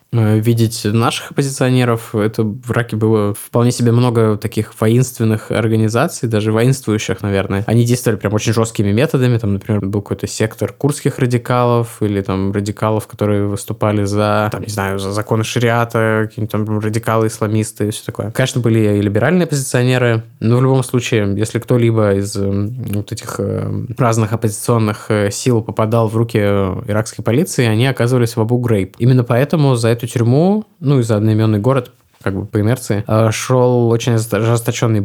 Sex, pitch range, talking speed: male, 105-125 Hz, 155 wpm